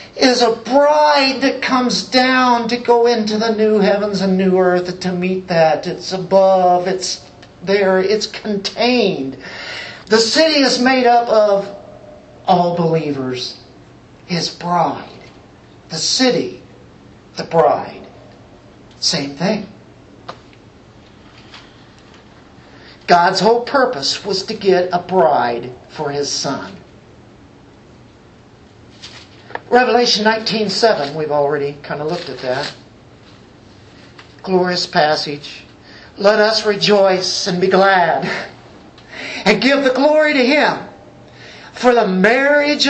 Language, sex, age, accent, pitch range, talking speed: English, male, 50-69, American, 170-230 Hz, 110 wpm